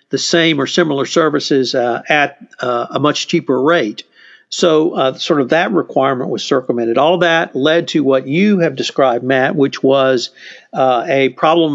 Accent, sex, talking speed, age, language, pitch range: American, male, 175 wpm, 50-69, English, 140-180 Hz